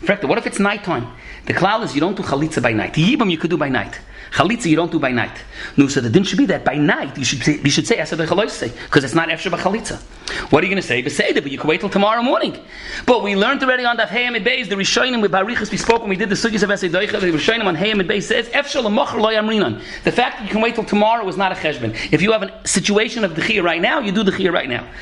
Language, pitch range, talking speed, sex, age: English, 135-205 Hz, 280 wpm, male, 40-59